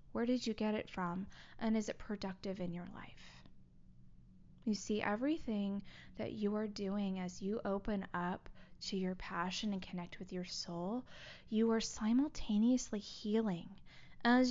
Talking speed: 155 wpm